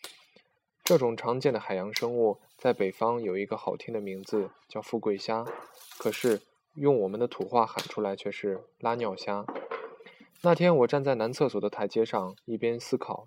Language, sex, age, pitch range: Chinese, male, 10-29, 105-140 Hz